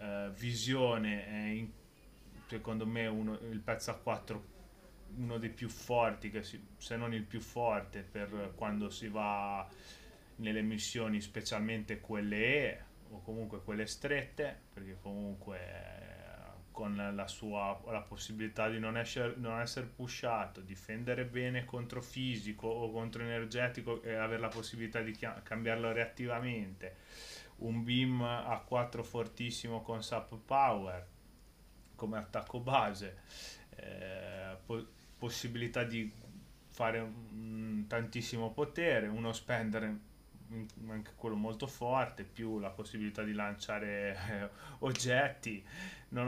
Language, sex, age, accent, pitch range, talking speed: Italian, male, 30-49, native, 105-120 Hz, 125 wpm